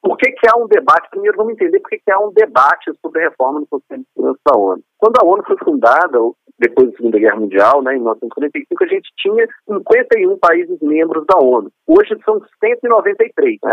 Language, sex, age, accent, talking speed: Portuguese, male, 40-59, Brazilian, 210 wpm